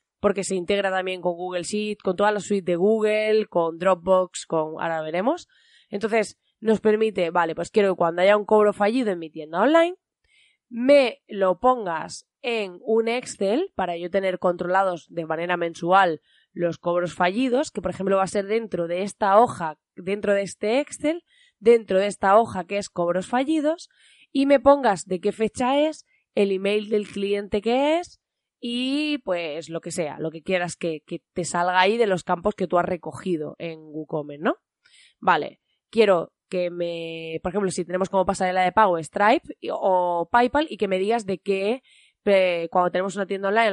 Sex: female